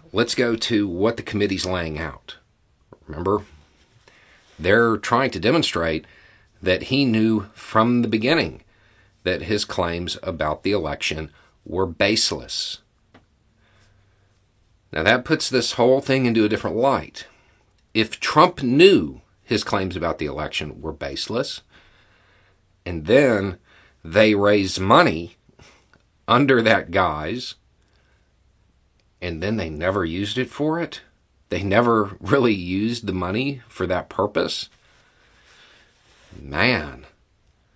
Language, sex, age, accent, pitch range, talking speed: English, male, 50-69, American, 80-110 Hz, 115 wpm